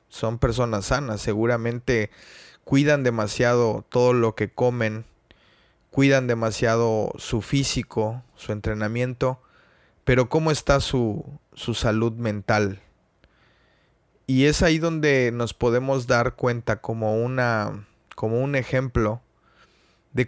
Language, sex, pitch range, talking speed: Spanish, male, 110-125 Hz, 110 wpm